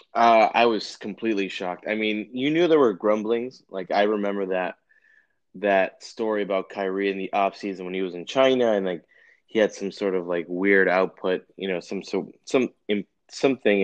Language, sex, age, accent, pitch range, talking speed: English, male, 20-39, American, 90-110 Hz, 205 wpm